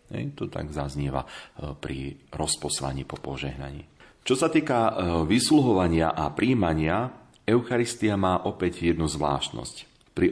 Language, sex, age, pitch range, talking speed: Slovak, male, 40-59, 75-105 Hz, 115 wpm